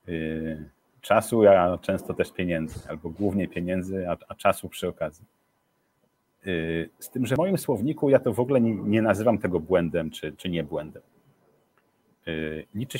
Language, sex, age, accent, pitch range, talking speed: Polish, male, 40-59, native, 85-115 Hz, 150 wpm